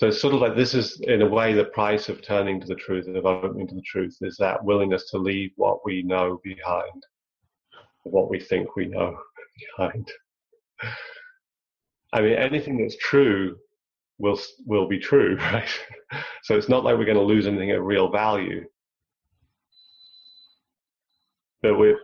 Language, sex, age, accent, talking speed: English, male, 30-49, British, 165 wpm